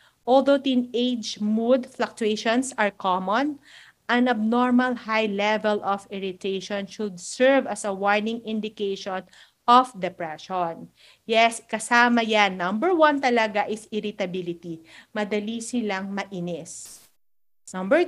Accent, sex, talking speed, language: native, female, 105 wpm, Filipino